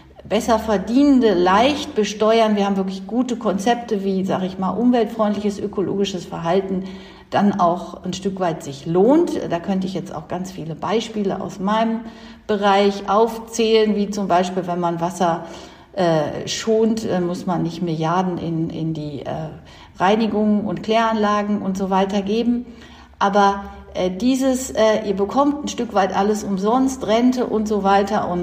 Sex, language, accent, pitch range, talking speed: female, German, German, 175-215 Hz, 160 wpm